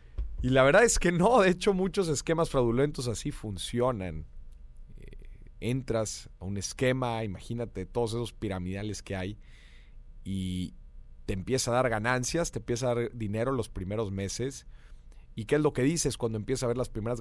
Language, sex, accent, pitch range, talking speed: Spanish, male, Mexican, 95-135 Hz, 175 wpm